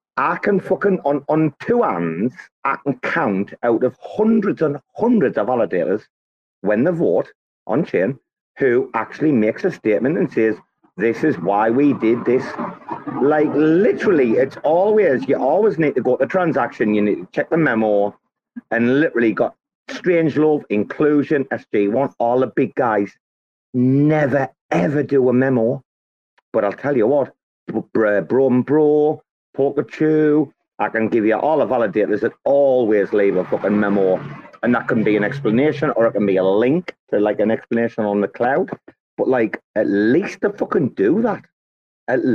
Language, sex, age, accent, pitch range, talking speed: English, male, 40-59, British, 105-155 Hz, 175 wpm